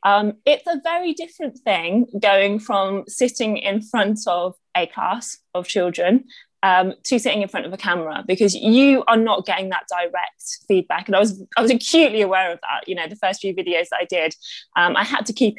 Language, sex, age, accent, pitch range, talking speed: English, female, 20-39, British, 185-245 Hz, 210 wpm